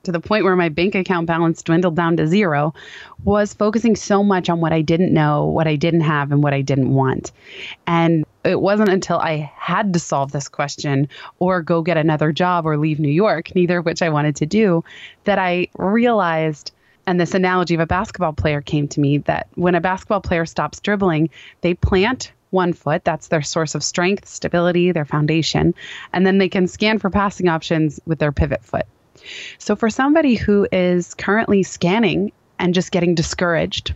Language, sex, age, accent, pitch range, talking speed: English, female, 20-39, American, 160-205 Hz, 195 wpm